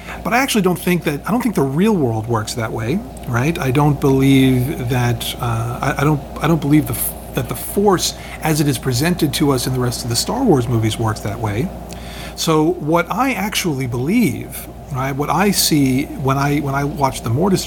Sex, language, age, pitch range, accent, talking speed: male, English, 40-59, 120-155 Hz, American, 215 wpm